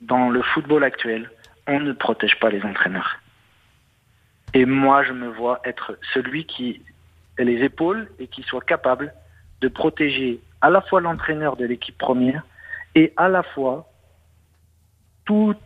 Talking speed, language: 150 wpm, French